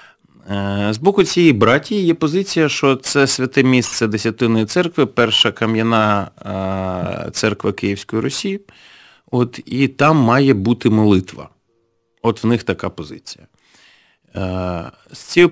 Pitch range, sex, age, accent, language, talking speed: 105-130 Hz, male, 30-49, native, Ukrainian, 115 wpm